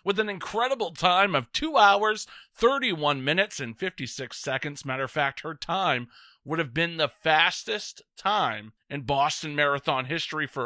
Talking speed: 160 wpm